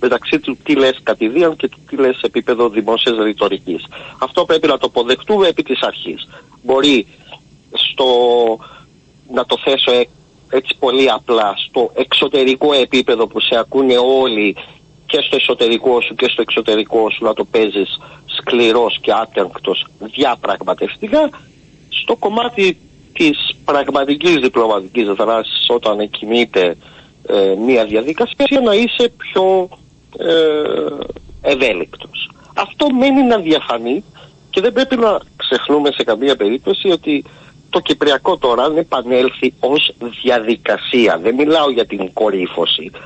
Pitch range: 115-165 Hz